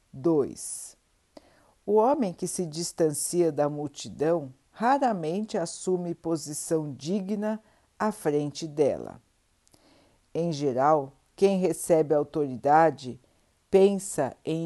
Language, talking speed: Portuguese, 90 wpm